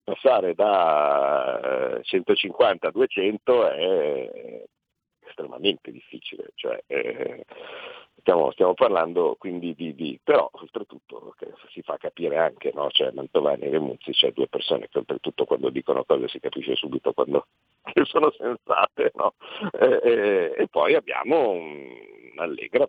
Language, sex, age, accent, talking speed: Italian, male, 50-69, native, 130 wpm